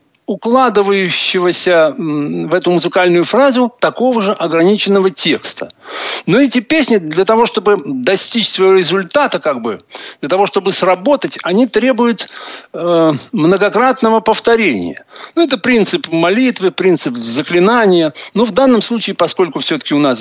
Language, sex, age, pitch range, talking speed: Russian, male, 60-79, 175-230 Hz, 130 wpm